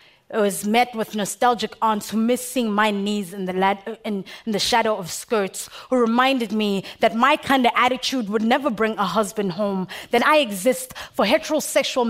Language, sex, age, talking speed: English, female, 20-39, 200 wpm